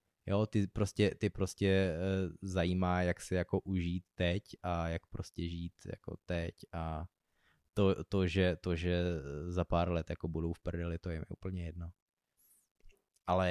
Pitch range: 85-95 Hz